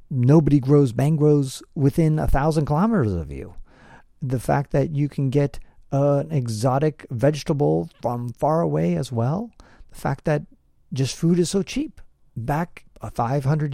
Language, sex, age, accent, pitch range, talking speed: English, male, 40-59, American, 105-150 Hz, 145 wpm